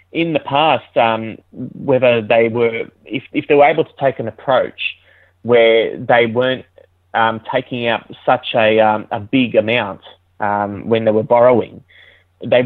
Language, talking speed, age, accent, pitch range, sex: English, 160 wpm, 20-39, Australian, 105-120 Hz, male